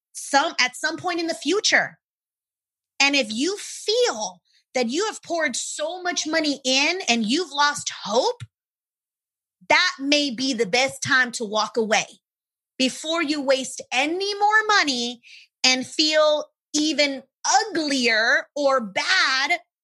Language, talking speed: English, 135 wpm